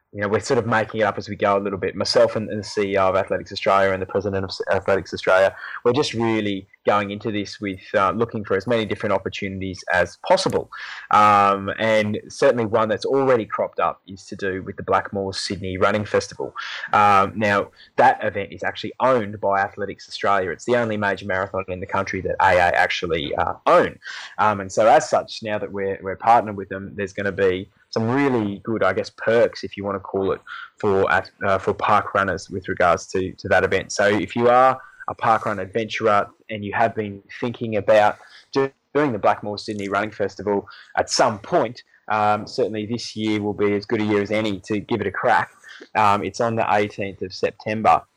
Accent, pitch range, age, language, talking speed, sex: Australian, 100-110 Hz, 20-39, English, 210 wpm, male